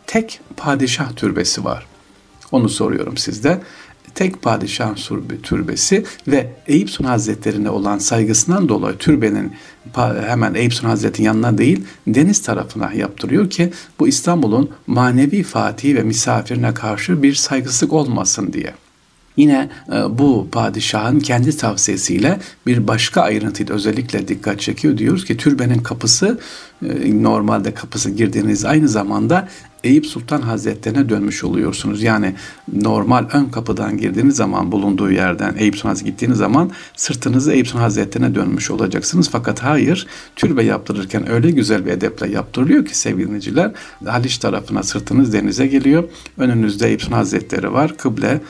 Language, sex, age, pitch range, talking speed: Turkish, male, 60-79, 105-140 Hz, 130 wpm